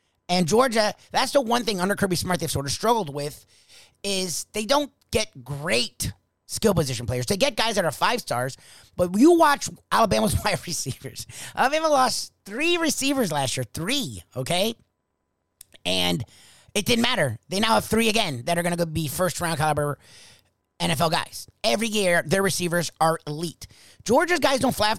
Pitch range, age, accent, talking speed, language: 145-210 Hz, 30-49, American, 175 wpm, English